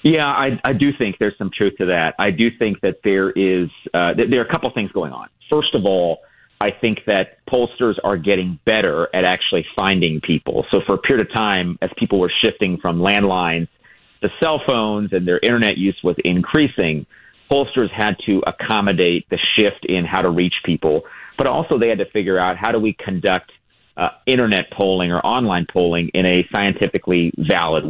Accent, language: American, English